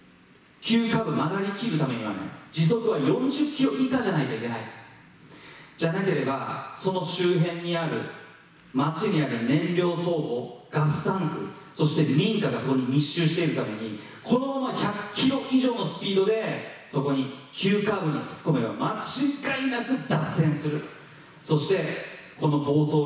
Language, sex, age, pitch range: Japanese, male, 40-59, 150-235 Hz